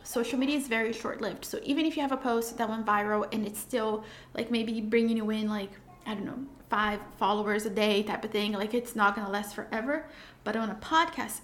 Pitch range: 215-260 Hz